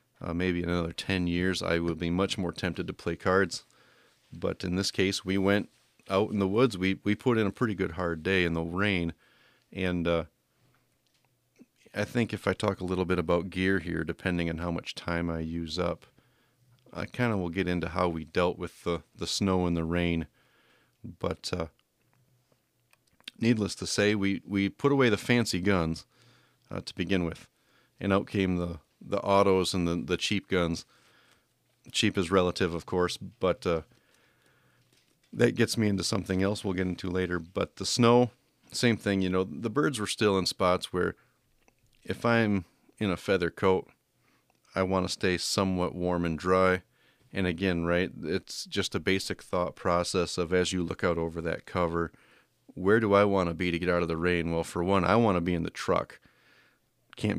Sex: male